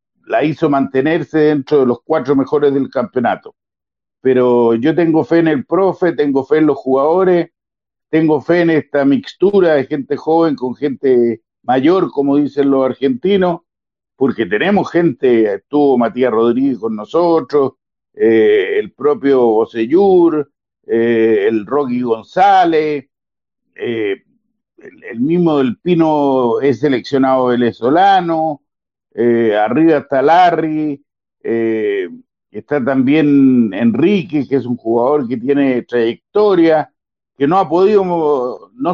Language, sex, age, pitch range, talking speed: Spanish, male, 50-69, 125-180 Hz, 130 wpm